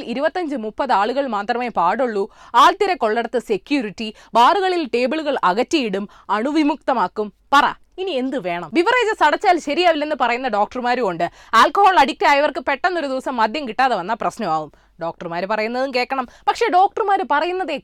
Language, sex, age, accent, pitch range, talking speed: Malayalam, female, 20-39, native, 215-320 Hz, 115 wpm